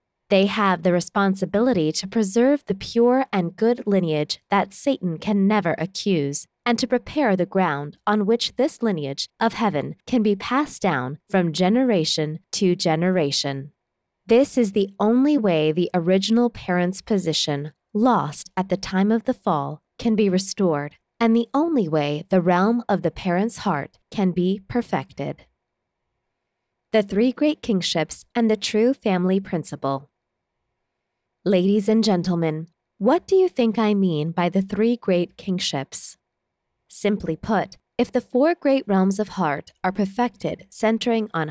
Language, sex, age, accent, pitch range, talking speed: English, female, 20-39, American, 160-225 Hz, 150 wpm